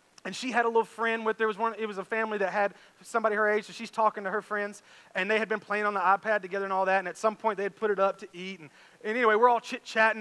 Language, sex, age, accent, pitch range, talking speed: English, male, 30-49, American, 180-220 Hz, 305 wpm